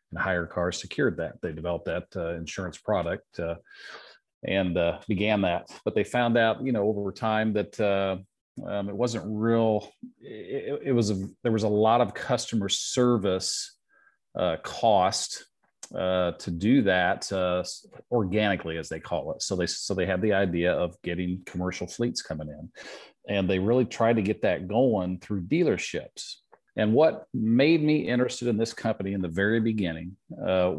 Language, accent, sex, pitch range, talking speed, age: English, American, male, 90-115 Hz, 175 wpm, 40-59